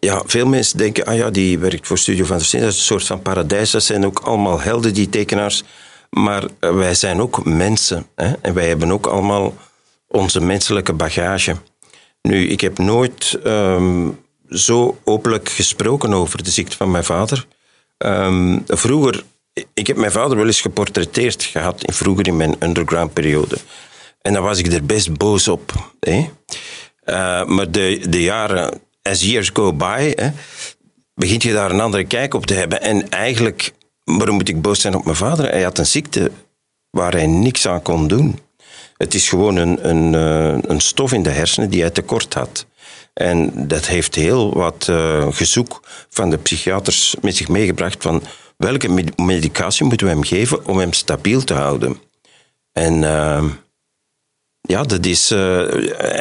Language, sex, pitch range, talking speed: Dutch, male, 85-100 Hz, 170 wpm